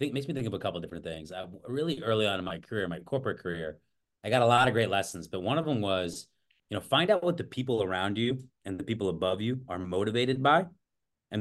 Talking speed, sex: 260 wpm, male